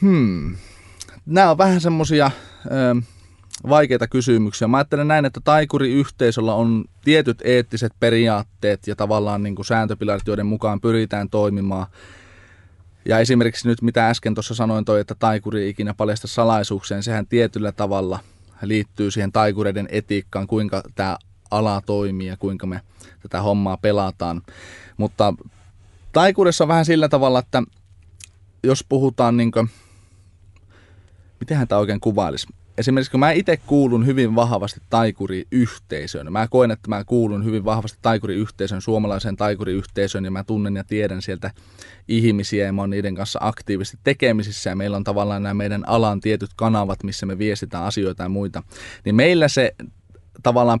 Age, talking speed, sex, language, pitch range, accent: 20-39, 140 wpm, male, Finnish, 95-115 Hz, native